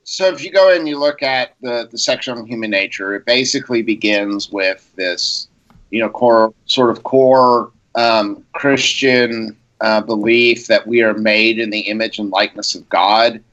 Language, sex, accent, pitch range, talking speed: English, male, American, 105-125 Hz, 175 wpm